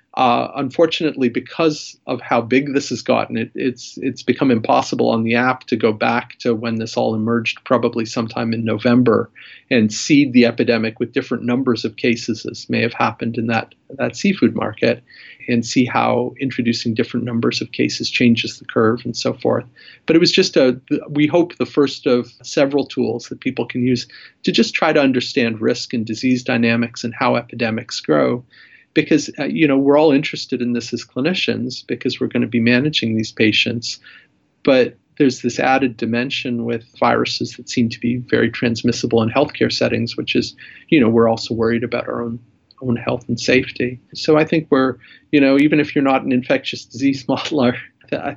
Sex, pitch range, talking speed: male, 115-135 Hz, 190 wpm